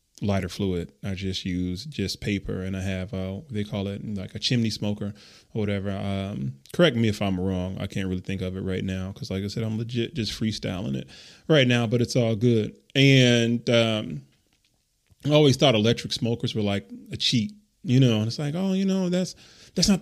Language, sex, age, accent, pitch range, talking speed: English, male, 20-39, American, 100-130 Hz, 215 wpm